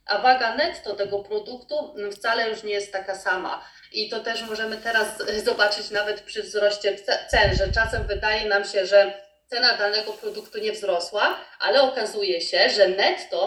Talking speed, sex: 165 wpm, female